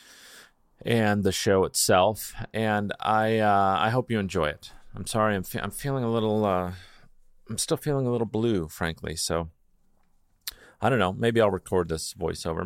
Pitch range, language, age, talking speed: 90-120 Hz, English, 40-59, 175 wpm